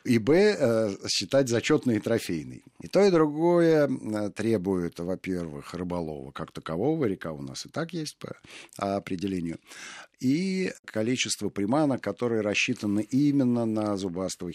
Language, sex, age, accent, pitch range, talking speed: Russian, male, 50-69, native, 85-120 Hz, 130 wpm